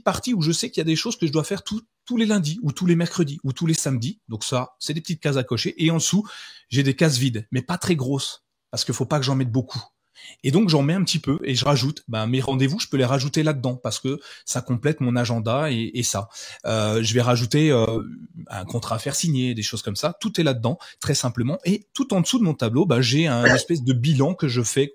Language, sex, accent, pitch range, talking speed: French, male, French, 125-165 Hz, 275 wpm